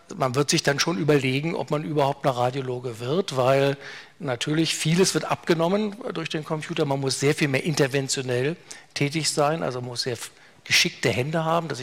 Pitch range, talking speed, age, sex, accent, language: 135-155 Hz, 180 wpm, 50-69, male, German, German